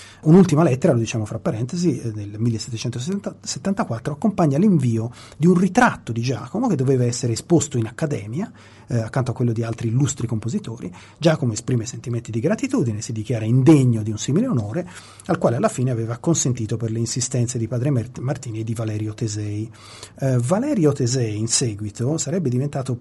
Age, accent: 30-49, native